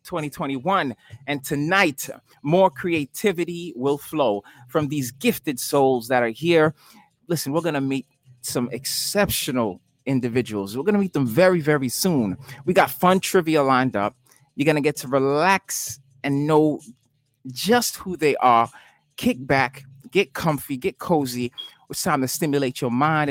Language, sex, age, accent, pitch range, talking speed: English, male, 30-49, American, 120-155 Hz, 155 wpm